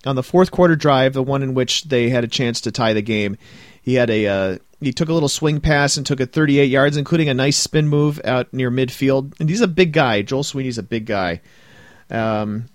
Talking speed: 240 wpm